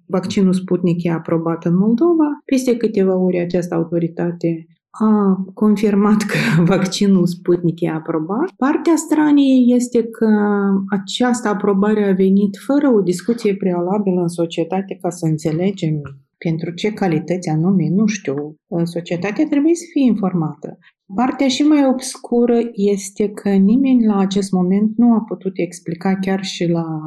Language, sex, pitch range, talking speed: Romanian, female, 175-215 Hz, 140 wpm